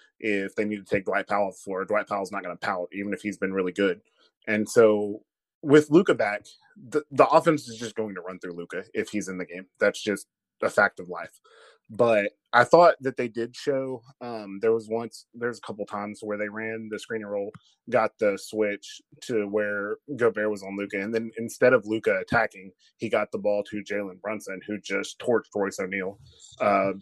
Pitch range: 105-140 Hz